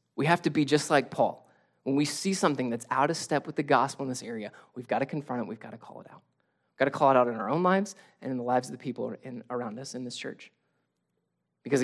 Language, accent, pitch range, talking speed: English, American, 135-180 Hz, 285 wpm